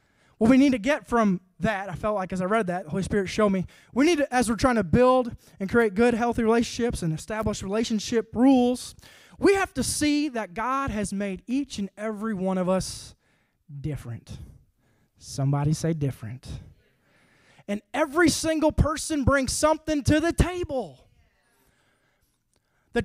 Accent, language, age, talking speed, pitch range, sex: American, English, 20-39, 165 wpm, 195-300 Hz, male